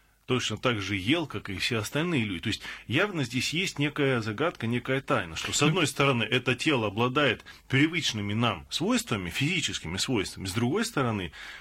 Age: 30-49